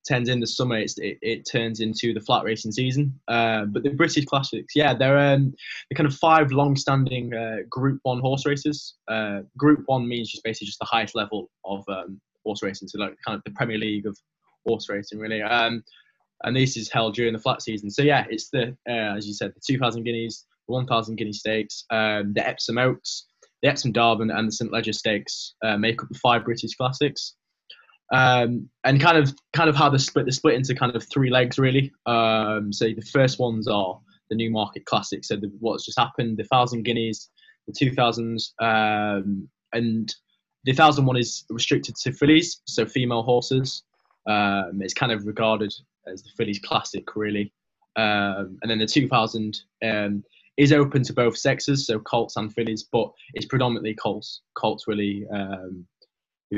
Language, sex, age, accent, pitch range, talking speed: English, male, 10-29, British, 110-135 Hz, 190 wpm